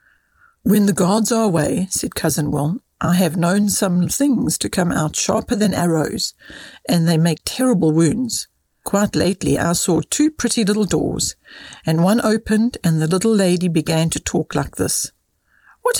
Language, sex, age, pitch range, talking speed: English, female, 60-79, 165-220 Hz, 170 wpm